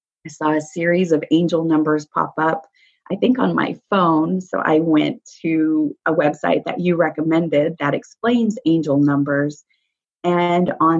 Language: English